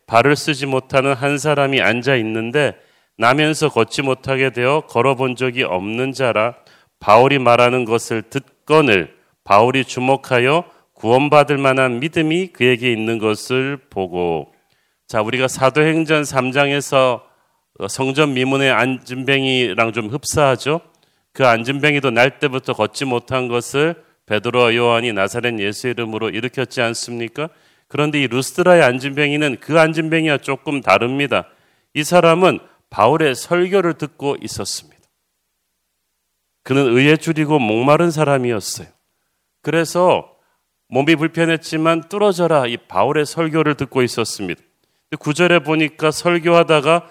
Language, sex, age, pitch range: Korean, male, 40-59, 120-155 Hz